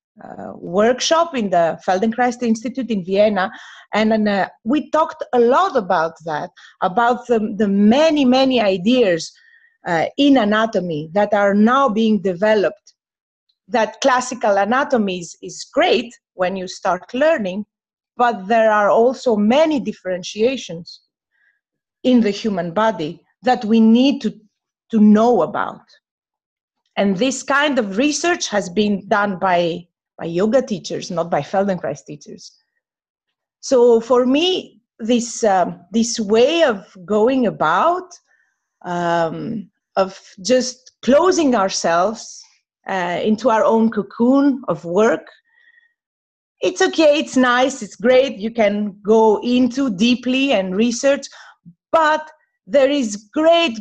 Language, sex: German, female